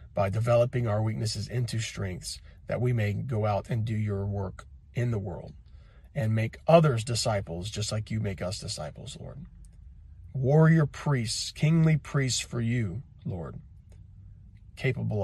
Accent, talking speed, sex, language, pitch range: American, 145 wpm, male, English, 100-130 Hz